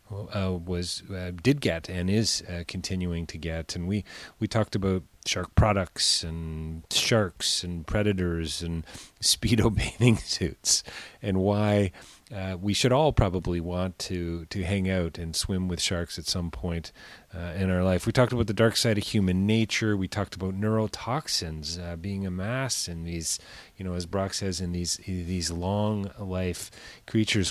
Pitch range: 85-100 Hz